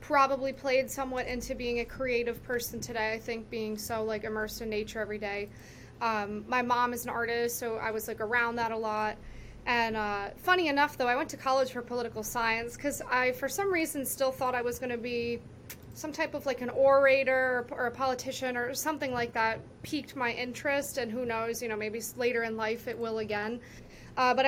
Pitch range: 230-270 Hz